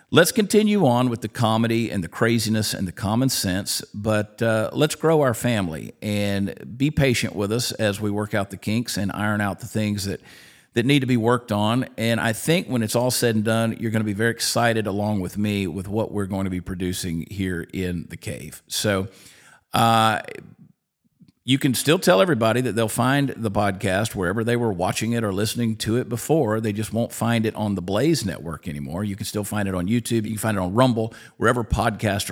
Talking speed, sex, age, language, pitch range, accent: 220 wpm, male, 50-69, English, 100-125 Hz, American